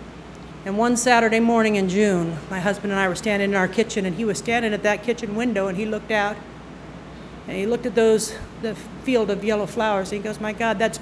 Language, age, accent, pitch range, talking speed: English, 50-69, American, 185-235 Hz, 235 wpm